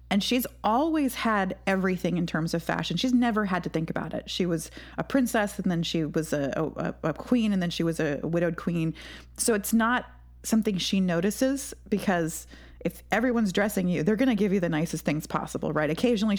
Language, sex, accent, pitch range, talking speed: English, female, American, 165-210 Hz, 210 wpm